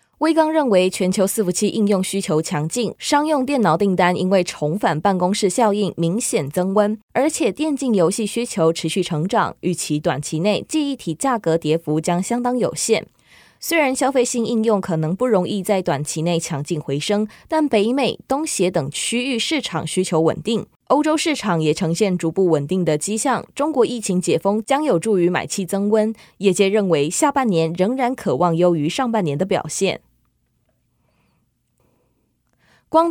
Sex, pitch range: female, 175-240 Hz